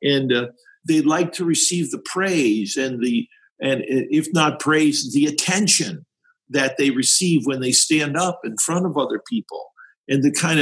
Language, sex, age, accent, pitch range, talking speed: English, male, 50-69, American, 135-170 Hz, 175 wpm